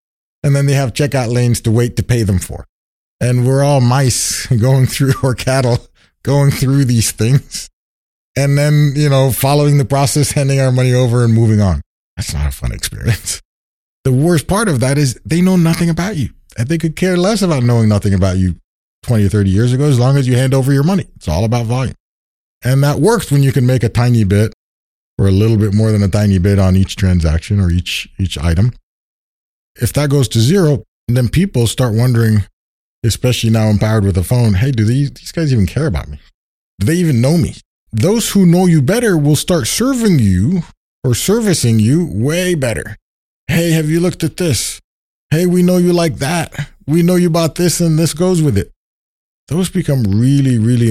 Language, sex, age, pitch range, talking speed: English, male, 30-49, 100-145 Hz, 205 wpm